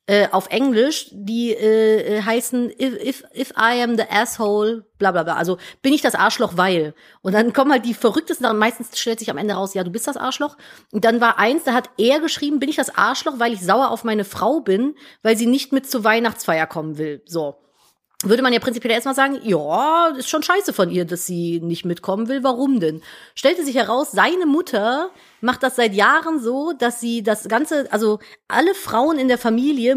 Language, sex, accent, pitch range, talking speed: German, female, German, 210-270 Hz, 215 wpm